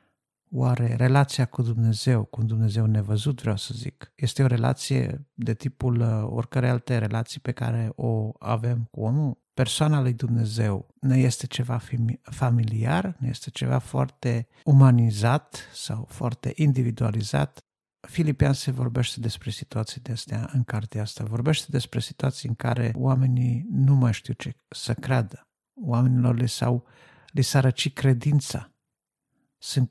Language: Romanian